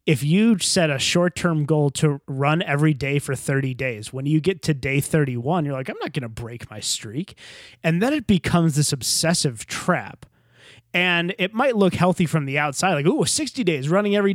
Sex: male